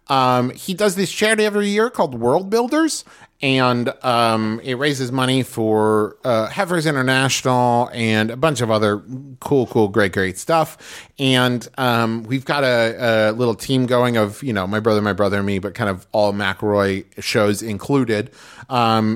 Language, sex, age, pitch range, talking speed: English, male, 30-49, 110-135 Hz, 170 wpm